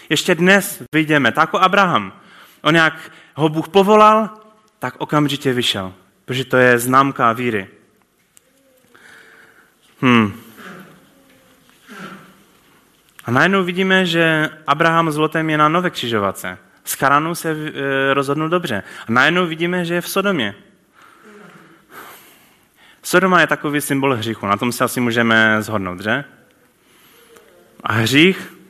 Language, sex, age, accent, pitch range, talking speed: Czech, male, 20-39, native, 125-180 Hz, 115 wpm